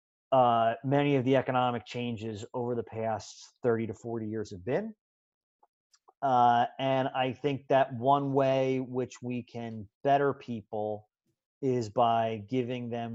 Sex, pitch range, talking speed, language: male, 115-140 Hz, 140 wpm, English